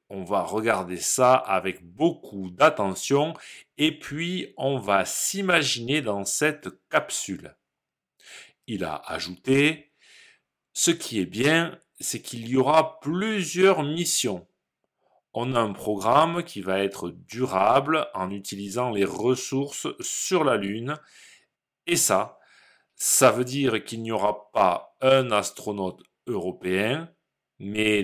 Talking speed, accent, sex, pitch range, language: 120 wpm, French, male, 100-145 Hz, French